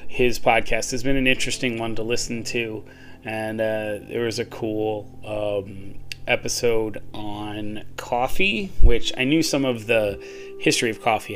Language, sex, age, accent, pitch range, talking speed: English, male, 30-49, American, 105-125 Hz, 155 wpm